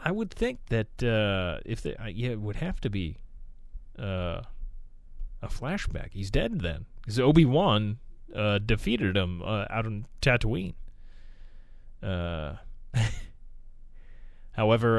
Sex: male